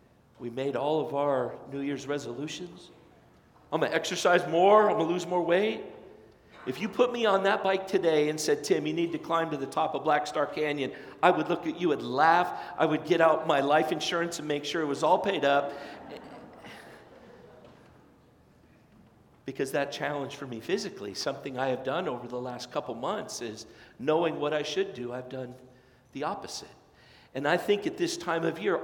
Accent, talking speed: American, 200 wpm